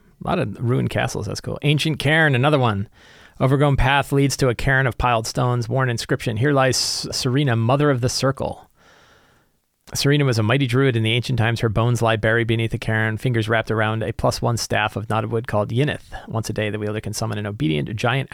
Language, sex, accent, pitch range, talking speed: English, male, American, 110-130 Hz, 220 wpm